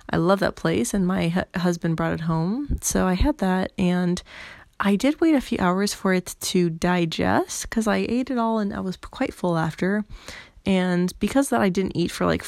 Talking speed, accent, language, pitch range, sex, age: 215 wpm, American, English, 165-210 Hz, female, 20-39